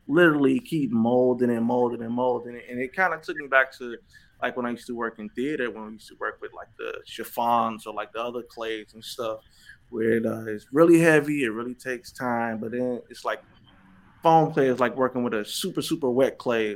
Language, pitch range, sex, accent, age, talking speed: English, 115-145 Hz, male, American, 20-39, 225 wpm